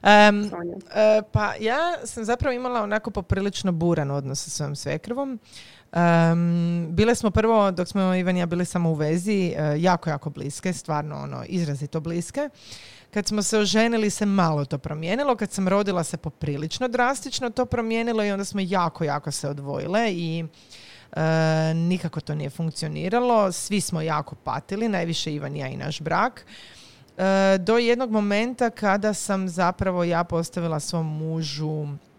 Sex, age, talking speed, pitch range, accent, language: female, 30-49, 155 wpm, 155-210 Hz, native, Croatian